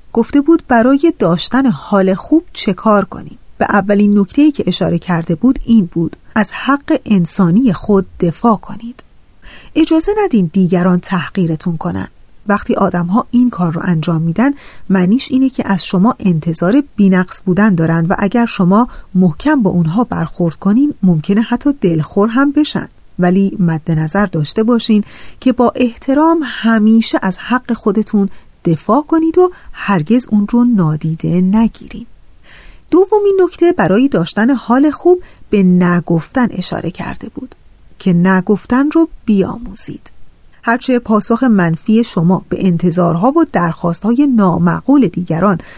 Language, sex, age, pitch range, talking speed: Persian, female, 30-49, 180-250 Hz, 135 wpm